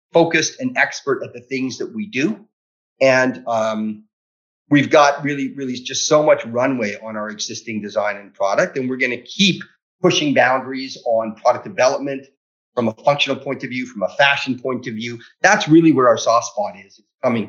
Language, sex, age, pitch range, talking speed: English, male, 40-59, 115-145 Hz, 190 wpm